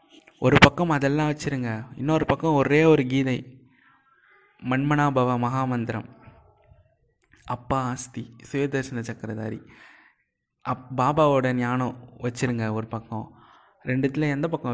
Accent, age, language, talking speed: native, 20-39, Tamil, 100 wpm